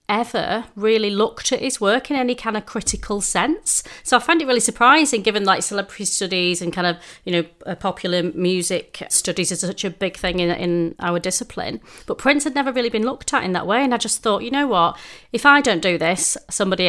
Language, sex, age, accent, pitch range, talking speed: English, female, 30-49, British, 185-220 Hz, 225 wpm